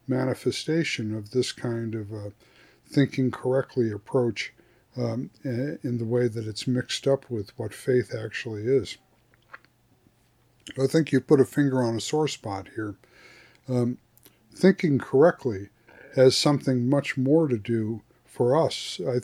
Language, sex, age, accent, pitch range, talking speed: English, male, 50-69, American, 115-135 Hz, 140 wpm